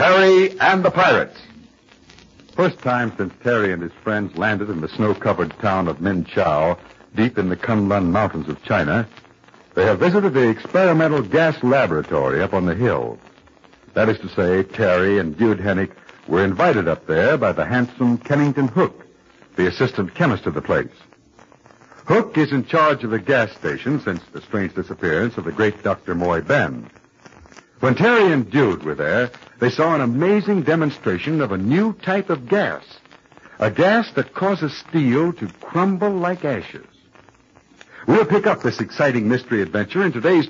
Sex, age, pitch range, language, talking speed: male, 60-79, 105-170 Hz, English, 165 wpm